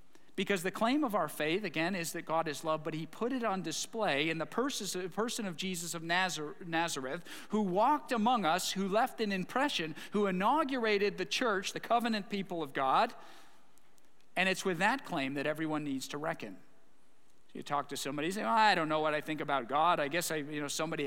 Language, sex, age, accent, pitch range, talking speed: English, male, 50-69, American, 150-195 Hz, 210 wpm